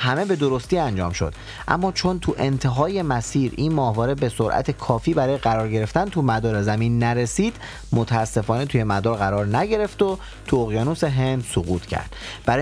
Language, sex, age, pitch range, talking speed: Persian, male, 30-49, 105-140 Hz, 160 wpm